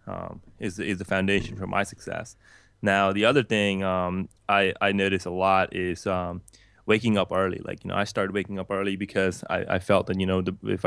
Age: 20-39